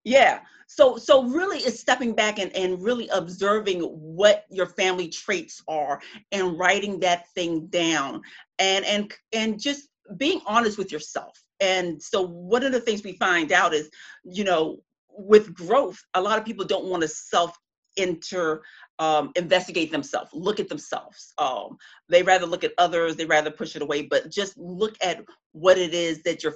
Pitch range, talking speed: 170-225 Hz, 175 wpm